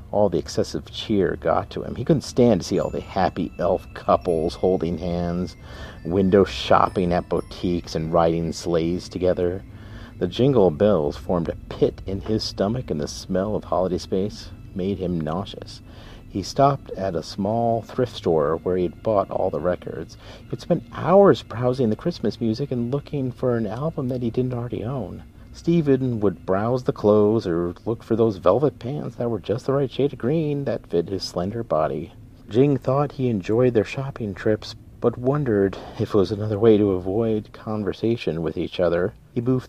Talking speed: 180 wpm